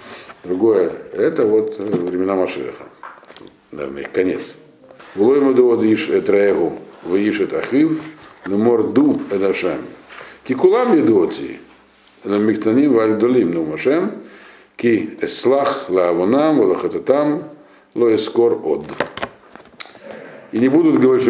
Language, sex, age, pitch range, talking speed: Russian, male, 50-69, 260-415 Hz, 35 wpm